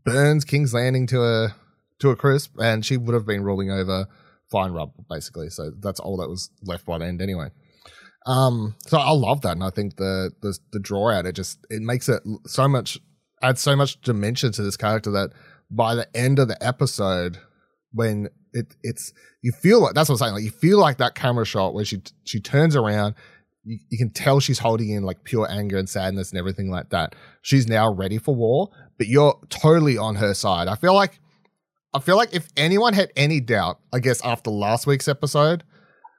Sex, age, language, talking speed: male, 20-39, English, 210 wpm